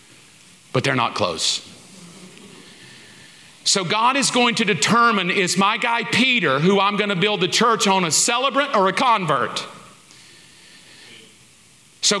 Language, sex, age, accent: English, male, 50-69, American